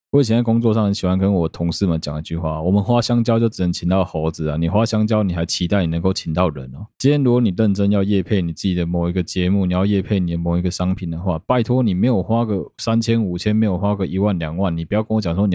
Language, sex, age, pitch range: Chinese, male, 20-39, 85-105 Hz